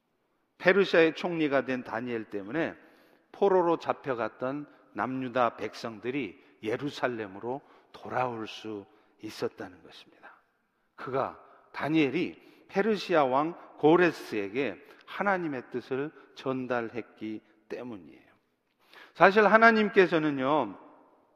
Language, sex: Korean, male